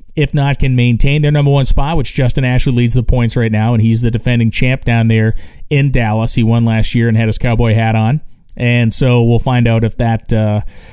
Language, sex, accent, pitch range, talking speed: English, male, American, 115-140 Hz, 235 wpm